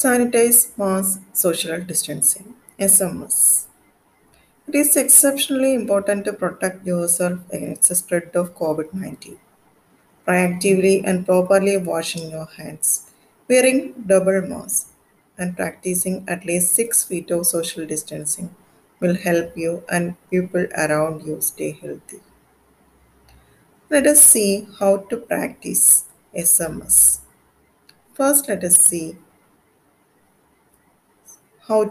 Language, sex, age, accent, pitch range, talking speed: English, female, 20-39, Indian, 165-215 Hz, 105 wpm